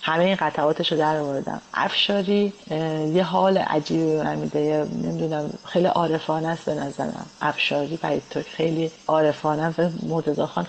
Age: 40-59